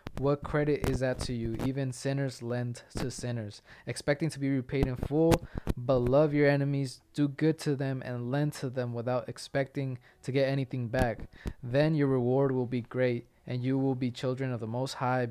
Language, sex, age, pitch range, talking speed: English, male, 20-39, 125-150 Hz, 195 wpm